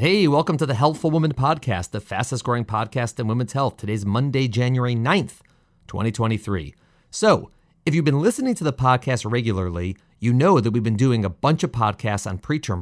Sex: male